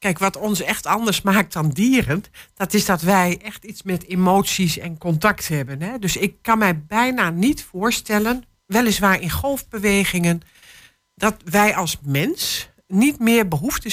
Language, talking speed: Dutch, 155 wpm